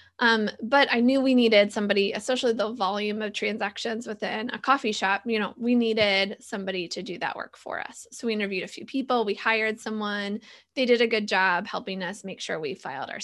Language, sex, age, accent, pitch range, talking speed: English, female, 20-39, American, 195-235 Hz, 220 wpm